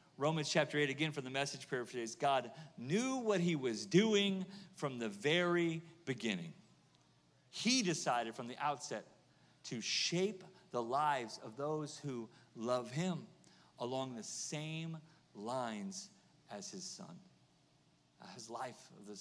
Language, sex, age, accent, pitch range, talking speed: English, male, 40-59, American, 150-195 Hz, 145 wpm